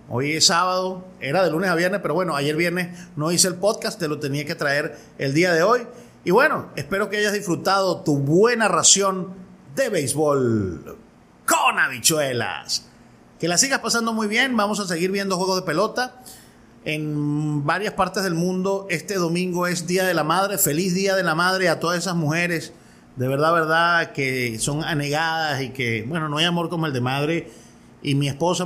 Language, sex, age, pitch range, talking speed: Spanish, male, 30-49, 140-190 Hz, 190 wpm